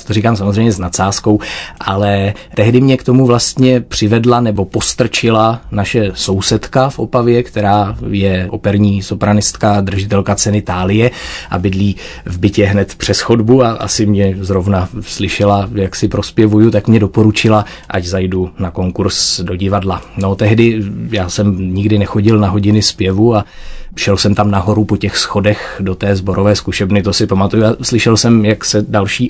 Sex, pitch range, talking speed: male, 100-110 Hz, 155 wpm